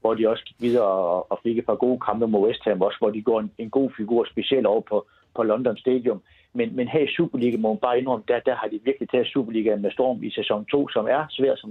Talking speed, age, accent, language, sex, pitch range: 270 wpm, 60-79, native, Danish, male, 115-155 Hz